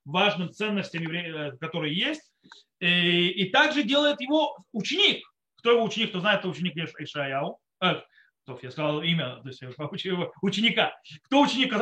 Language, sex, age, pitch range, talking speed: Russian, male, 30-49, 155-225 Hz, 160 wpm